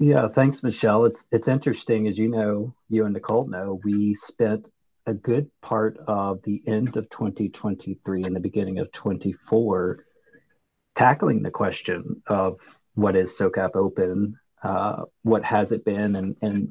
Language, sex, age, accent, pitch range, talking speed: English, male, 40-59, American, 105-120 Hz, 155 wpm